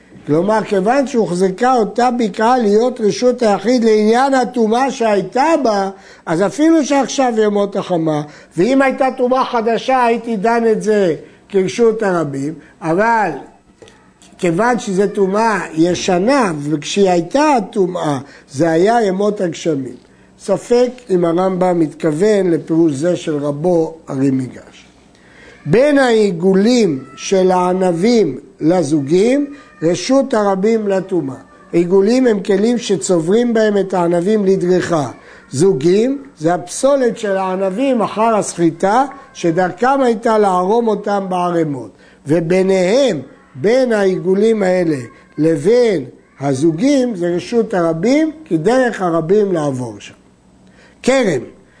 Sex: male